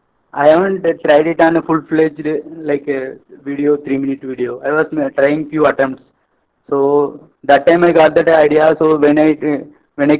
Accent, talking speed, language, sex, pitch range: Indian, 170 wpm, English, male, 140-160 Hz